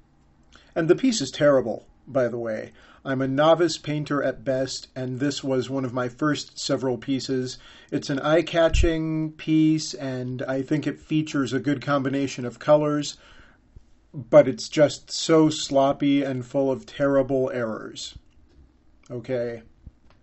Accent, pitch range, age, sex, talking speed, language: American, 125-145 Hz, 40-59, male, 140 wpm, English